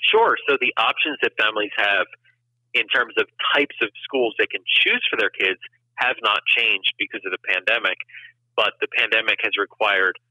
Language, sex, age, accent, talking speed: English, male, 40-59, American, 180 wpm